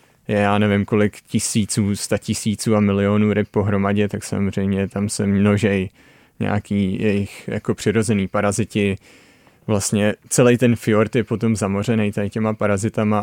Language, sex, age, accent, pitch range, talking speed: Czech, male, 20-39, native, 100-110 Hz, 140 wpm